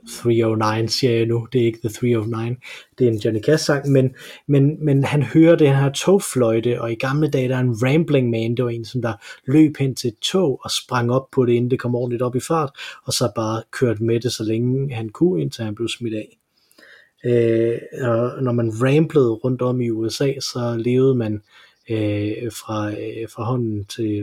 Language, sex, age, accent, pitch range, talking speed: Danish, male, 30-49, native, 110-135 Hz, 210 wpm